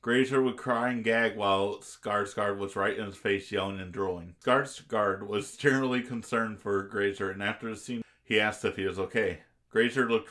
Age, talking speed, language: 40-59, 190 wpm, English